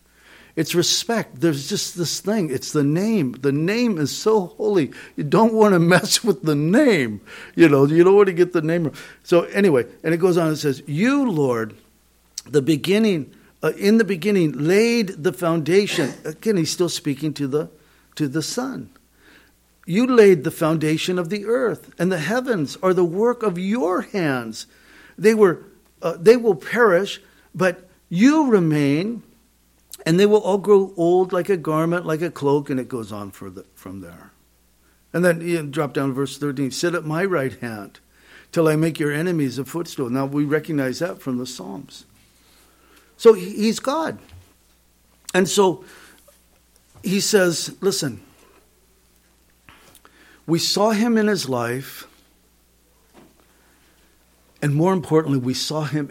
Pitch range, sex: 130-190 Hz, male